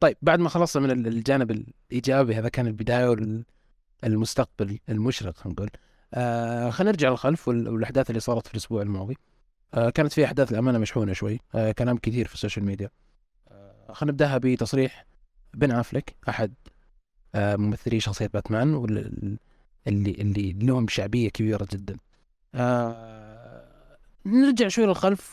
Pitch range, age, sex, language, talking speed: 110-145 Hz, 20-39, male, Arabic, 135 wpm